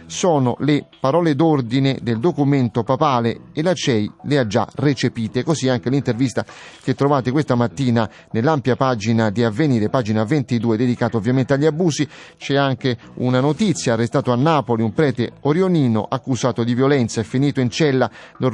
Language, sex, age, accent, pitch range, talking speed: Italian, male, 30-49, native, 120-145 Hz, 160 wpm